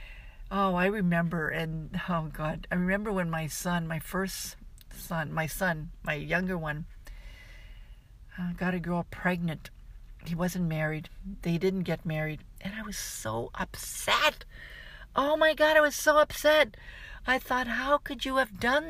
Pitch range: 155-195 Hz